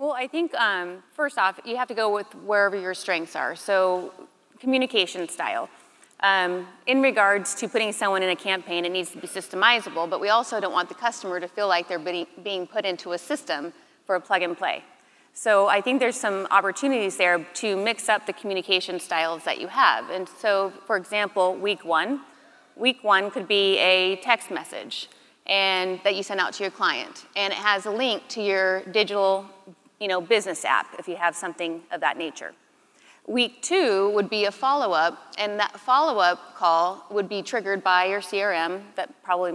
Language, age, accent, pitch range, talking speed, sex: English, 30-49, American, 180-210 Hz, 195 wpm, female